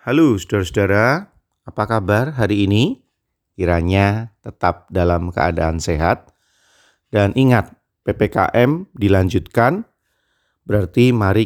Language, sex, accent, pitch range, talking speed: Indonesian, male, native, 90-120 Hz, 90 wpm